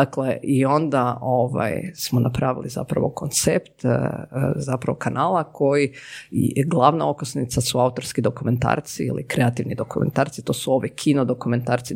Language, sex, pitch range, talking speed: Croatian, female, 125-160 Hz, 115 wpm